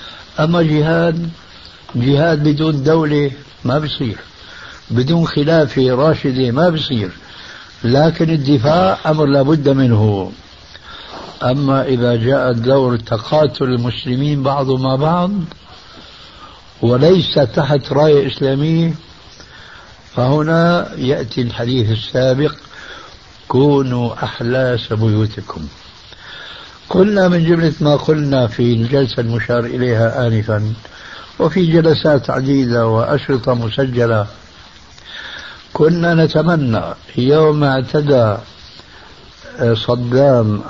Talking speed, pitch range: 85 wpm, 120-155 Hz